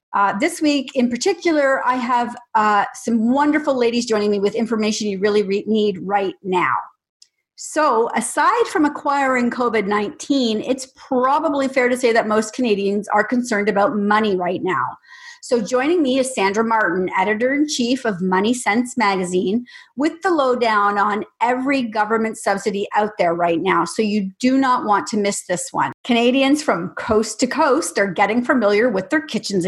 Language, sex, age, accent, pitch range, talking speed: English, female, 40-59, American, 210-285 Hz, 165 wpm